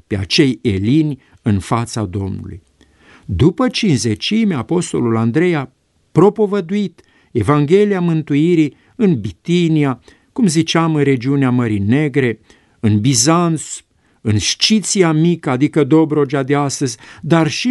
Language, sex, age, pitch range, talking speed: Romanian, male, 50-69, 115-165 Hz, 110 wpm